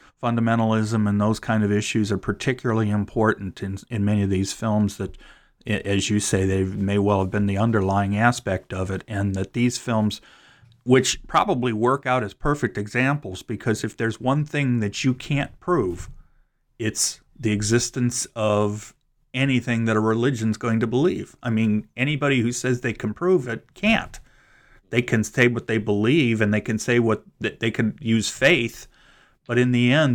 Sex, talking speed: male, 175 wpm